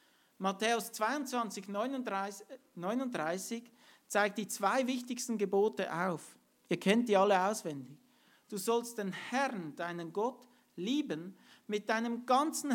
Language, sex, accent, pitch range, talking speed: English, male, Austrian, 185-245 Hz, 120 wpm